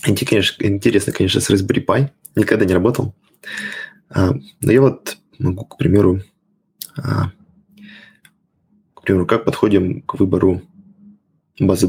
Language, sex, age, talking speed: Russian, male, 20-39, 95 wpm